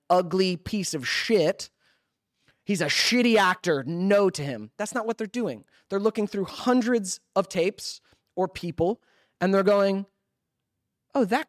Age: 30-49